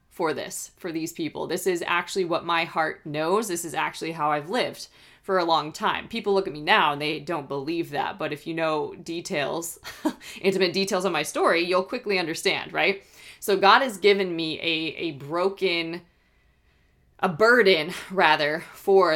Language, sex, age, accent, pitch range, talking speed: English, female, 20-39, American, 160-195 Hz, 180 wpm